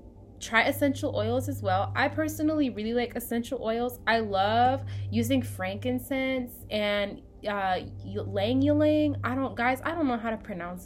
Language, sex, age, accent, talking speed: English, female, 10-29, American, 150 wpm